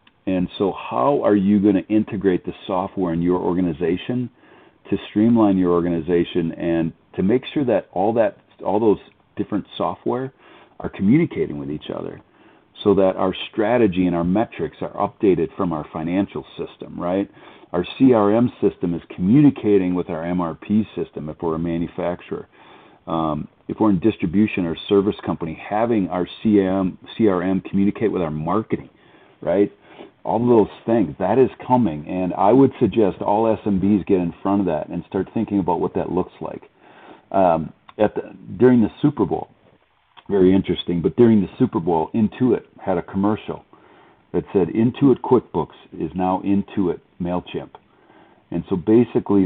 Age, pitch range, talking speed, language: 40-59, 85-105 Hz, 155 wpm, English